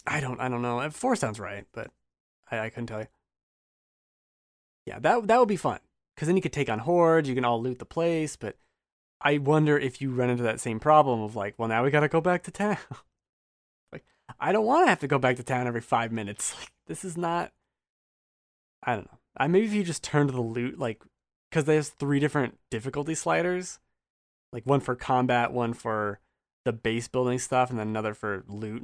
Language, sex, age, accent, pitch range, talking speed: English, male, 20-39, American, 115-155 Hz, 220 wpm